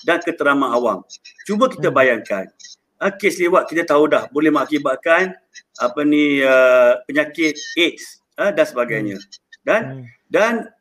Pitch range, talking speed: 195-285 Hz, 115 wpm